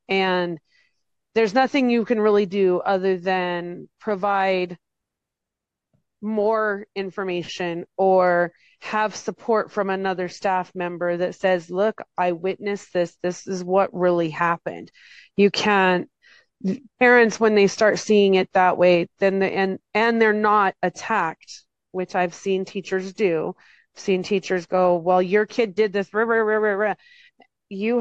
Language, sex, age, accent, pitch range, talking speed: English, female, 30-49, American, 175-205 Hz, 145 wpm